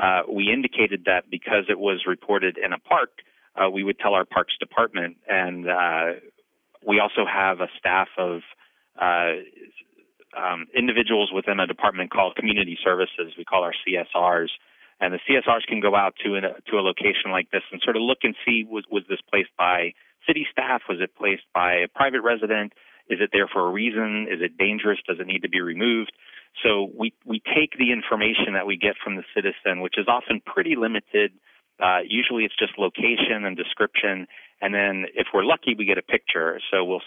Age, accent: 30-49, American